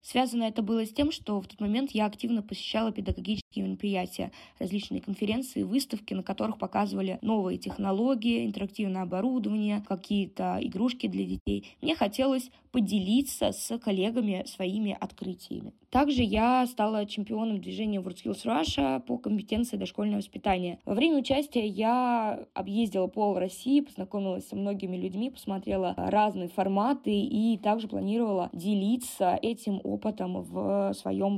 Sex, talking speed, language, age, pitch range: female, 130 wpm, Russian, 20-39, 190-230 Hz